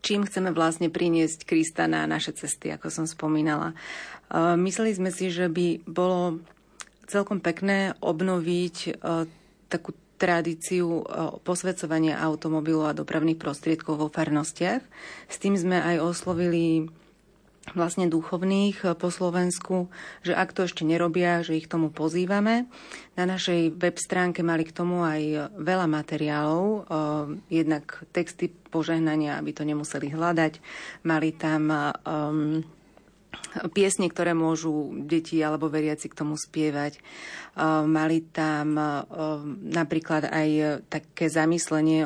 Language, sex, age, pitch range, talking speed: Slovak, female, 30-49, 155-175 Hz, 120 wpm